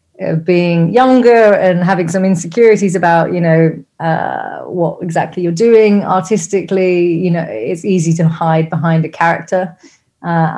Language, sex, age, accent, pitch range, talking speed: English, female, 30-49, British, 160-185 Hz, 145 wpm